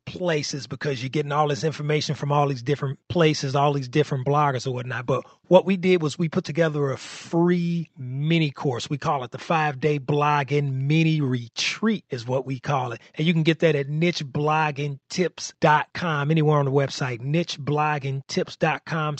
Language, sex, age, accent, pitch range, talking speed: English, male, 30-49, American, 125-160 Hz, 175 wpm